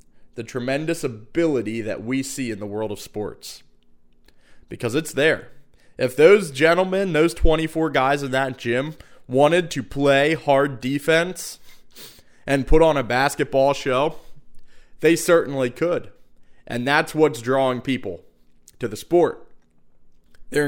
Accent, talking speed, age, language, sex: American, 135 wpm, 20-39, English, male